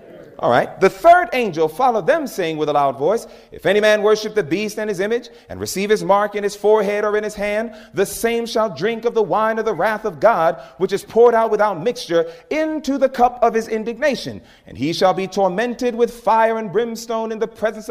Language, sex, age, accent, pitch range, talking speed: English, male, 30-49, American, 170-230 Hz, 230 wpm